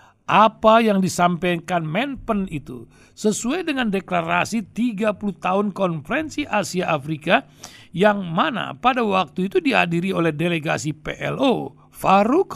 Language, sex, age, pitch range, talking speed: Indonesian, male, 60-79, 160-220 Hz, 110 wpm